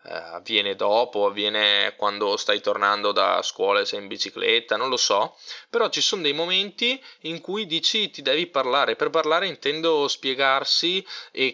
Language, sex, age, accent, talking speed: Italian, male, 20-39, native, 160 wpm